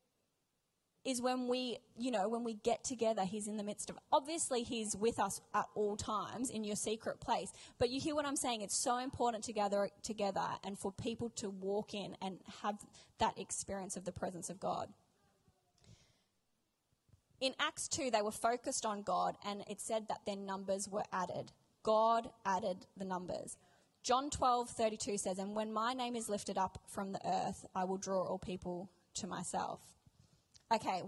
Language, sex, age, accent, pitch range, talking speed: English, female, 20-39, Australian, 200-245 Hz, 185 wpm